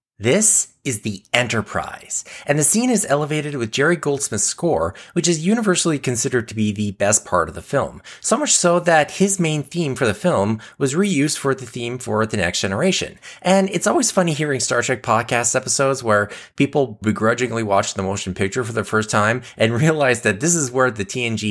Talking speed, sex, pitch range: 200 wpm, male, 100-145 Hz